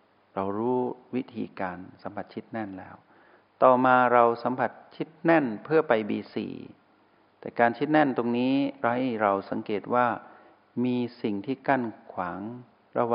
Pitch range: 100-125 Hz